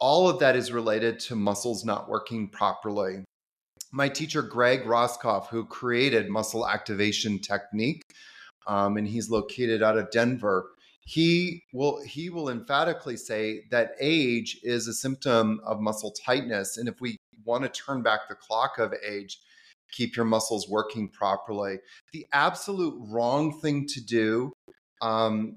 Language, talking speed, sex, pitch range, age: English, 145 wpm, male, 110-130 Hz, 30-49